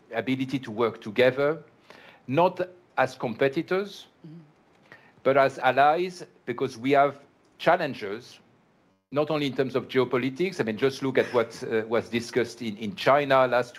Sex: male